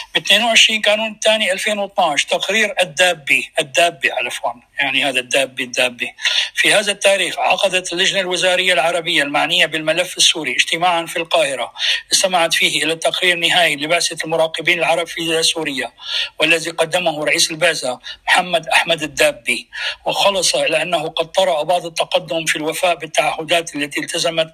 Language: Arabic